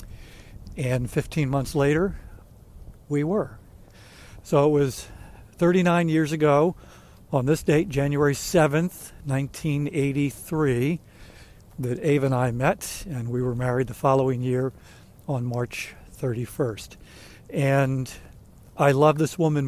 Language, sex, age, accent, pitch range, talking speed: English, male, 60-79, American, 125-155 Hz, 115 wpm